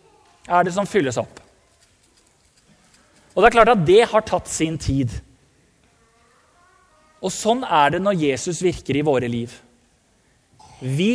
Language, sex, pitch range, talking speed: English, male, 150-225 Hz, 150 wpm